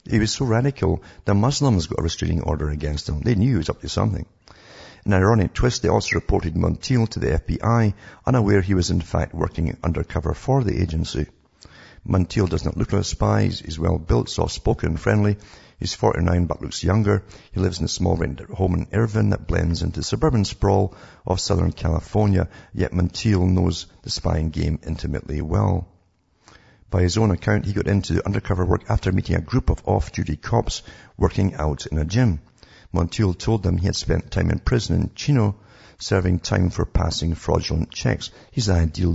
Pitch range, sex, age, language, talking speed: 85-105 Hz, male, 50-69, English, 185 wpm